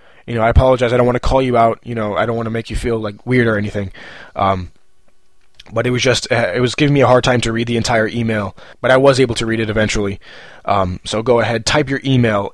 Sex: male